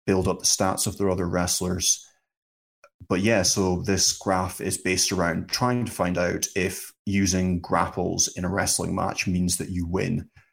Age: 20-39